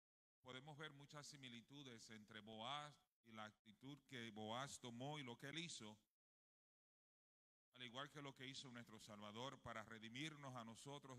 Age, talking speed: 40-59, 155 wpm